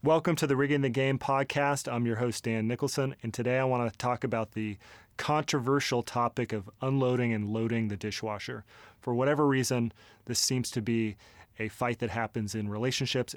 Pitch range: 110-130 Hz